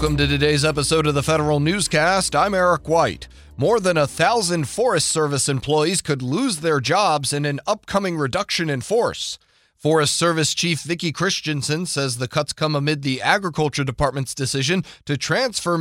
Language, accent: English, American